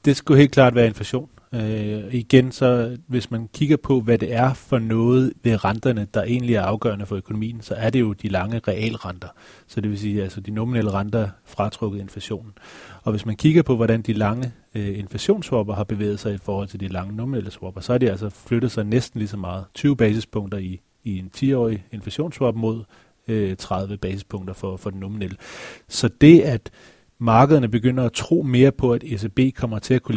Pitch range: 100-125 Hz